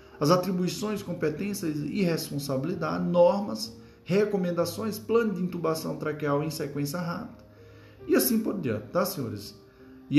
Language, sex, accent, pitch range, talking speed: Portuguese, male, Brazilian, 135-180 Hz, 125 wpm